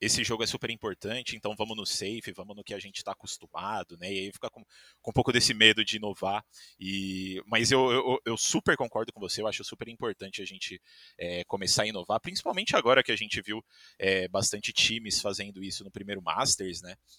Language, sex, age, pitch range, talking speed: Portuguese, male, 20-39, 95-120 Hz, 215 wpm